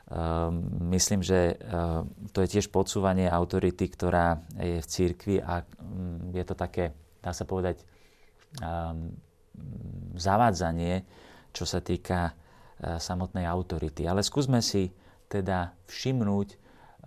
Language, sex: Slovak, male